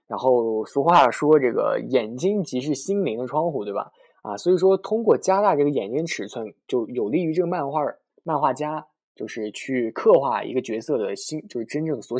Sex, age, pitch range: male, 20-39, 115-160 Hz